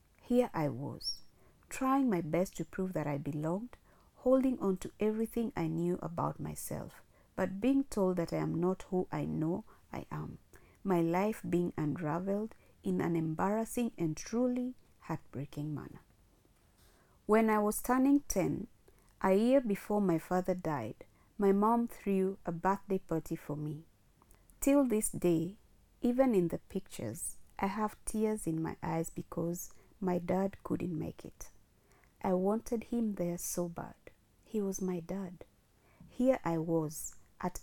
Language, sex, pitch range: English, female, 170-220 Hz